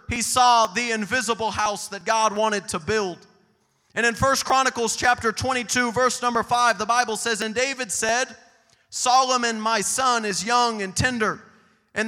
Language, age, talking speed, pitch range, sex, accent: English, 30-49, 165 wpm, 220-250 Hz, male, American